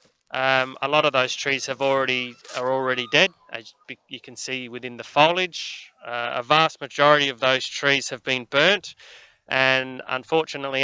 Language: English